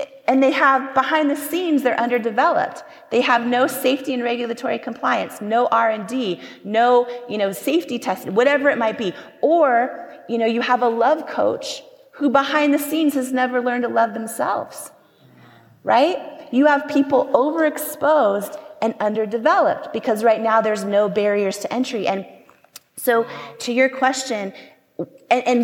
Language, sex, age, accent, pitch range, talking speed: English, female, 30-49, American, 235-290 Hz, 155 wpm